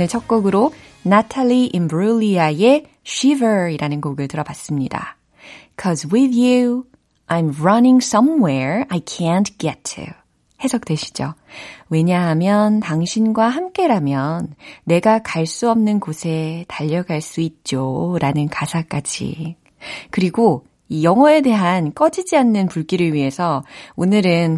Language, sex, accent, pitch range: Korean, female, native, 155-230 Hz